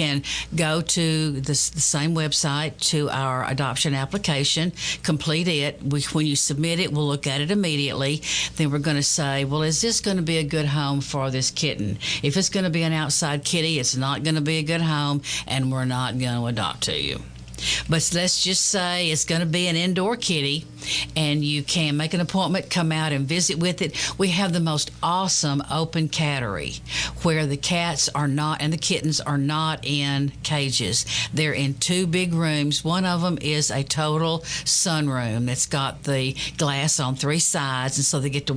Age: 50-69